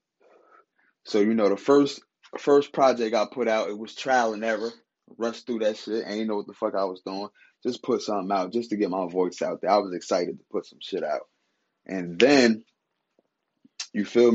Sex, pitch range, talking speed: male, 100-120 Hz, 210 wpm